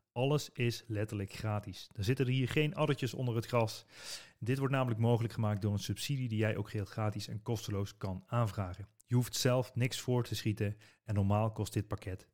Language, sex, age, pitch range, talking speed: Dutch, male, 30-49, 115-165 Hz, 205 wpm